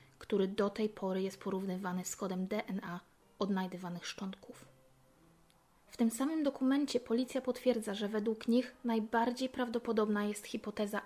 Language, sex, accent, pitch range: Polish, female, native, 195-230 Hz